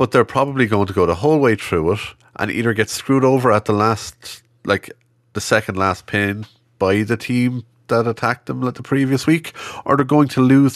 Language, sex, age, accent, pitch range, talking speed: English, male, 30-49, Irish, 85-120 Hz, 220 wpm